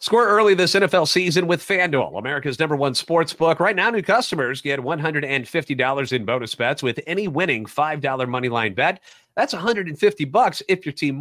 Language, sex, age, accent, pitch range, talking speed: English, male, 30-49, American, 140-175 Hz, 180 wpm